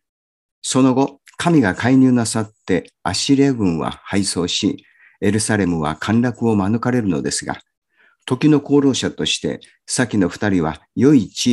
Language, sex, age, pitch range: Japanese, male, 50-69, 90-125 Hz